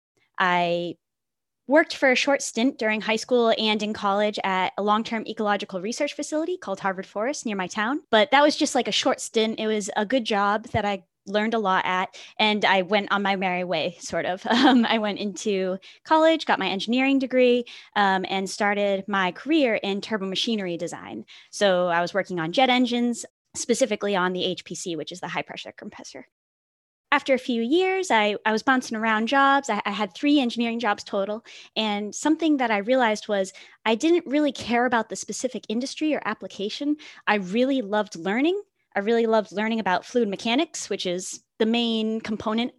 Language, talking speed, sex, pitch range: English, 190 wpm, female, 195-250 Hz